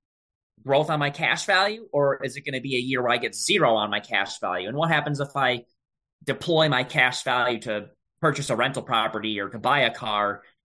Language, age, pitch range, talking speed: English, 20-39, 110-140 Hz, 225 wpm